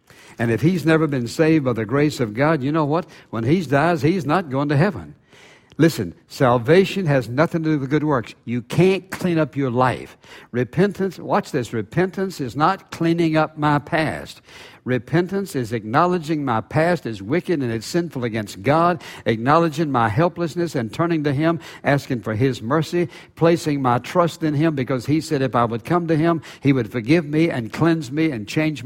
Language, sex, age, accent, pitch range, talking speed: English, male, 60-79, American, 125-170 Hz, 195 wpm